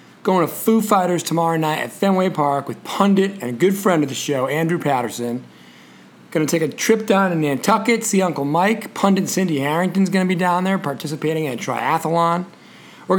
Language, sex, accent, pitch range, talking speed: English, male, American, 145-195 Hz, 200 wpm